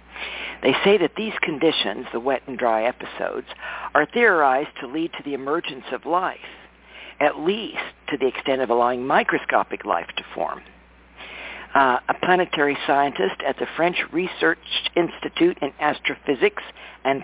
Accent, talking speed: American, 145 wpm